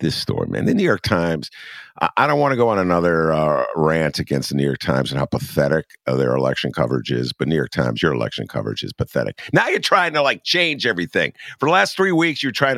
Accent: American